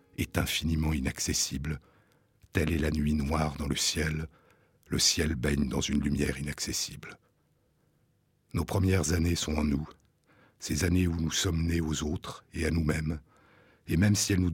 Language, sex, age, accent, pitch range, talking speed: French, male, 60-79, French, 75-85 Hz, 165 wpm